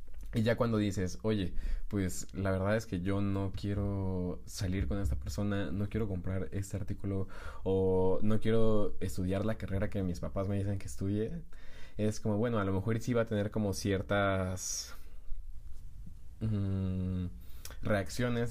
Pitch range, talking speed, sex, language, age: 90-105 Hz, 155 wpm, male, Spanish, 20-39